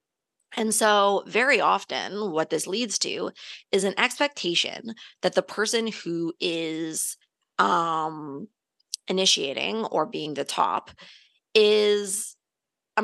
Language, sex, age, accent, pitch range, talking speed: English, female, 20-39, American, 175-210 Hz, 110 wpm